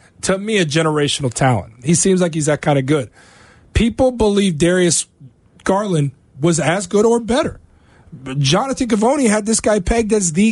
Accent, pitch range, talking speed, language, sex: American, 160-210 Hz, 170 wpm, English, male